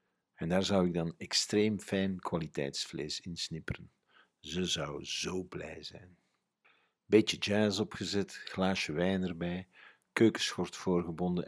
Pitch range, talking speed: 85-95 Hz, 120 wpm